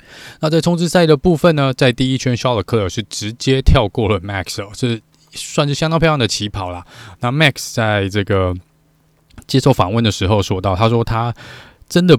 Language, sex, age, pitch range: Chinese, male, 20-39, 95-125 Hz